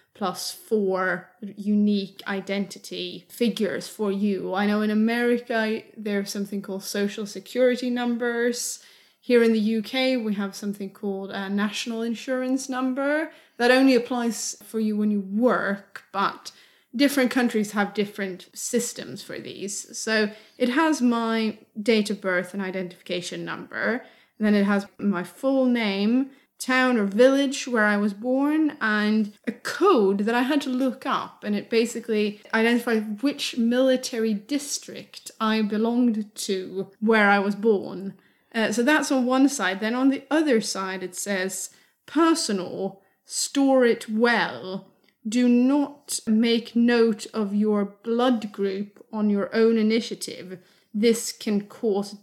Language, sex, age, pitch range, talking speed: English, female, 20-39, 200-245 Hz, 140 wpm